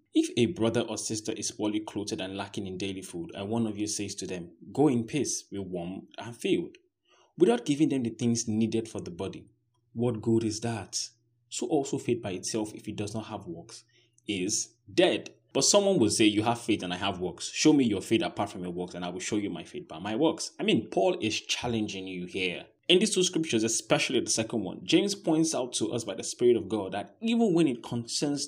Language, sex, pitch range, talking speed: English, male, 100-120 Hz, 235 wpm